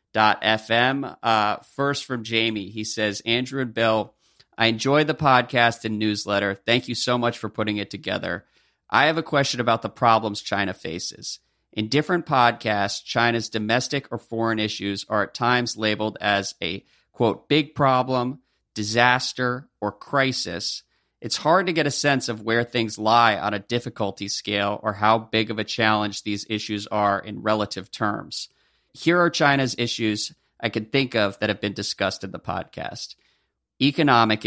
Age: 40-59